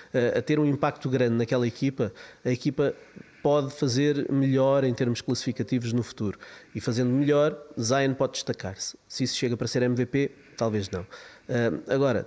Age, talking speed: 20-39, 155 wpm